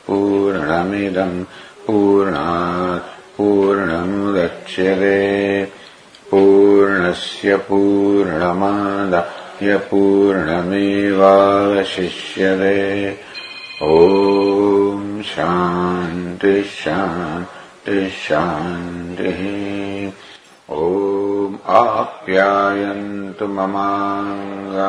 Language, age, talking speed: English, 60-79, 40 wpm